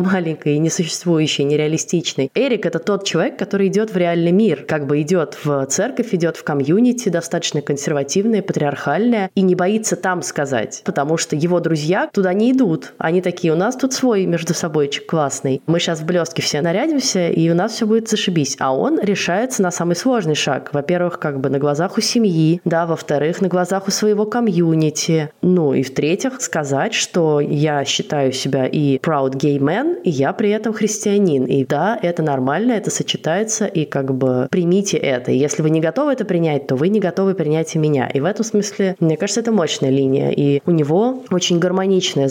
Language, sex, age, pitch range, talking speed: Russian, female, 20-39, 145-195 Hz, 190 wpm